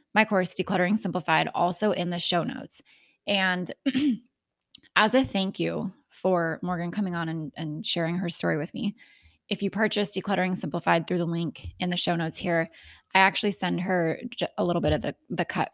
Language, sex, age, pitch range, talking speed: English, female, 20-39, 170-205 Hz, 185 wpm